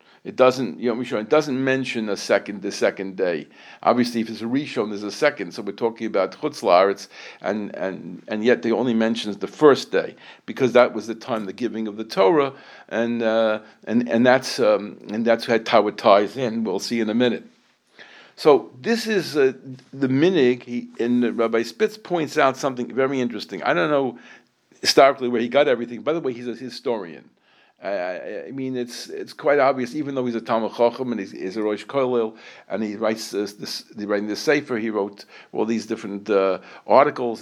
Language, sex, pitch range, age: English, male, 110-130 Hz, 50-69